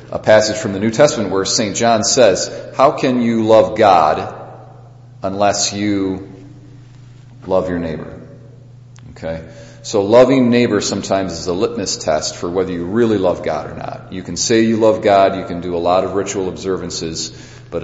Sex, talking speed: male, 175 wpm